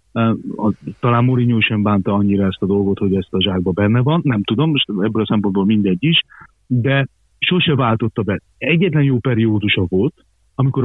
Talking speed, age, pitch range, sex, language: 170 wpm, 40-59, 105-130 Hz, male, Hungarian